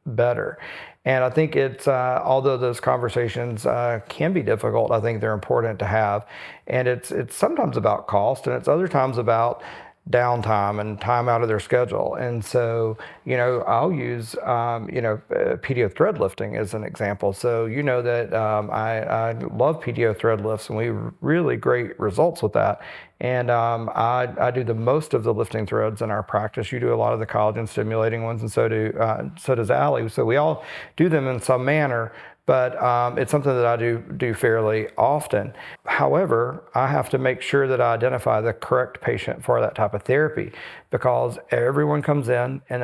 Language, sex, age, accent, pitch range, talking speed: English, male, 40-59, American, 115-130 Hz, 200 wpm